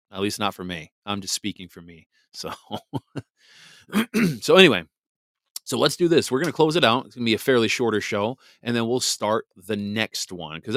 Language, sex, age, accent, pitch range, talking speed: English, male, 30-49, American, 95-115 Hz, 215 wpm